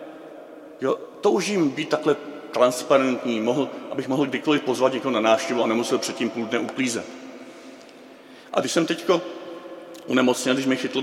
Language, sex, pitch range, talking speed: Czech, male, 125-175 Hz, 160 wpm